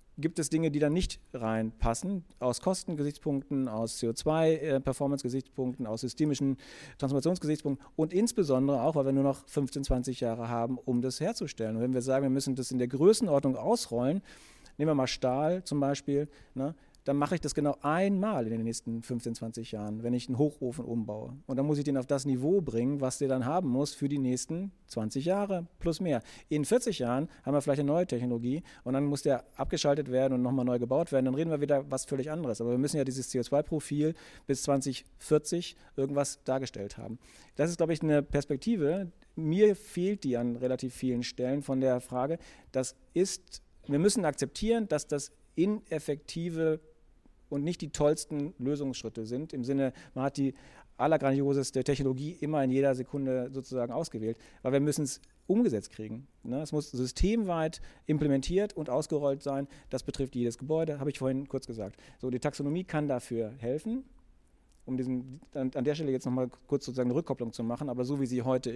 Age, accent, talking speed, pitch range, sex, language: 40-59, German, 185 wpm, 125-155 Hz, male, German